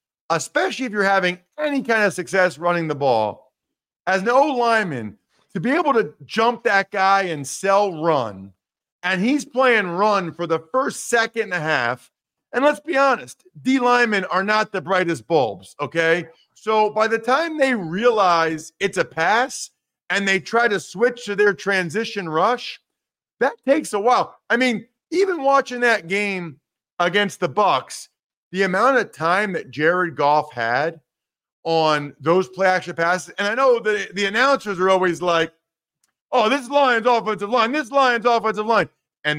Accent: American